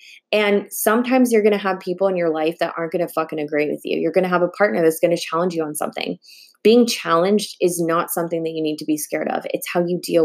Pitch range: 160-185 Hz